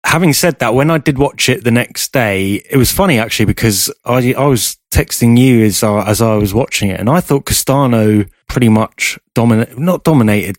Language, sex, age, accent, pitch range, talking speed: English, male, 20-39, British, 100-115 Hz, 210 wpm